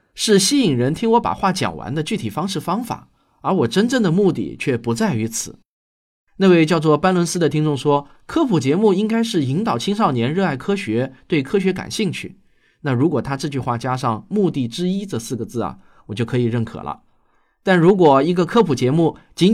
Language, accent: Chinese, native